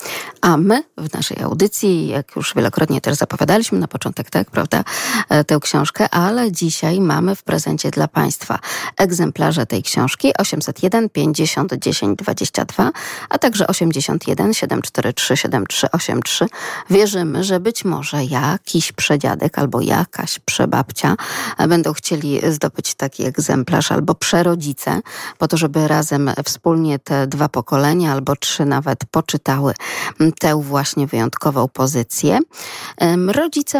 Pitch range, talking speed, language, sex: 150-195 Hz, 110 wpm, Polish, female